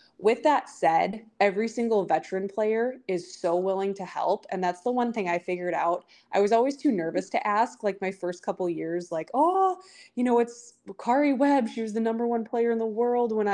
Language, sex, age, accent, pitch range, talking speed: English, female, 20-39, American, 180-235 Hz, 215 wpm